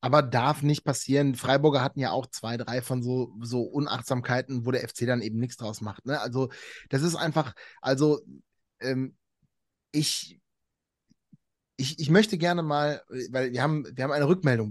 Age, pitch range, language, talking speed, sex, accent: 30-49, 125-150 Hz, German, 170 wpm, male, German